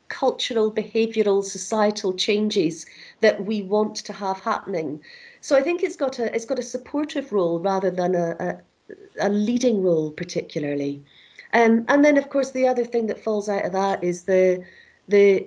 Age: 40-59